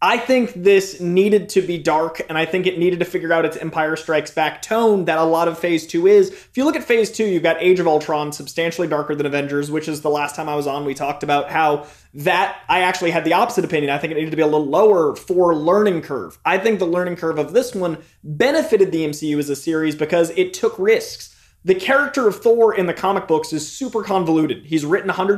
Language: English